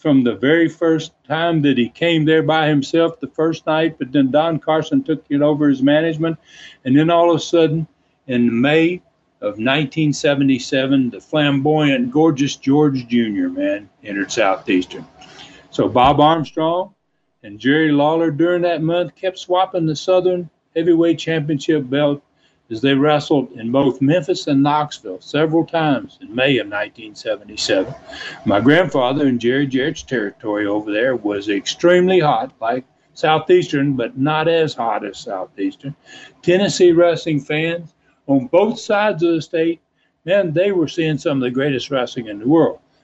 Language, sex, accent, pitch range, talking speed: English, male, American, 140-170 Hz, 155 wpm